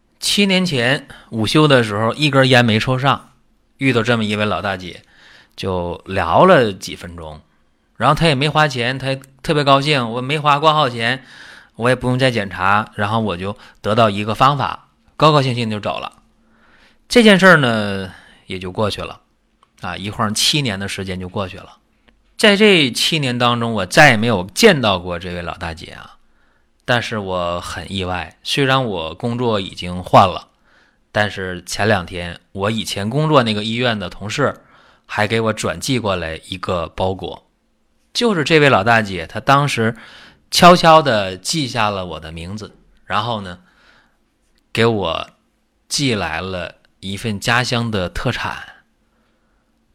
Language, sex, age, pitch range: Chinese, male, 30-49, 95-135 Hz